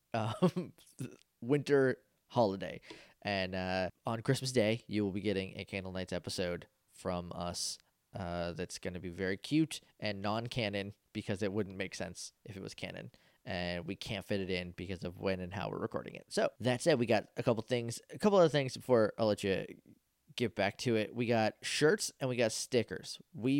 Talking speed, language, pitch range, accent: 200 wpm, English, 100-130 Hz, American